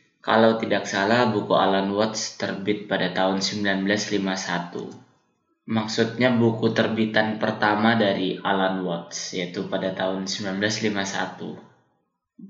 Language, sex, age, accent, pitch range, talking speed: Indonesian, male, 20-39, native, 105-120 Hz, 100 wpm